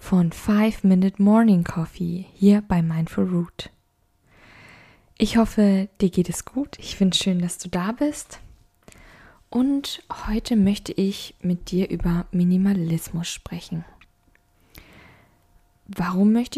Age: 20-39